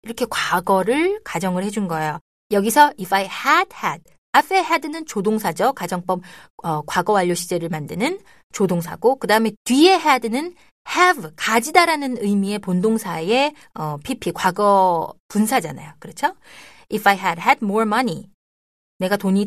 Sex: female